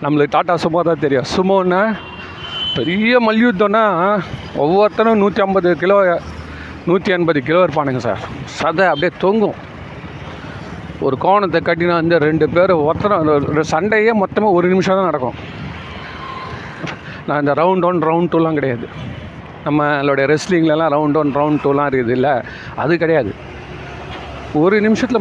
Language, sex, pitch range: Tamil, male, 150-200 Hz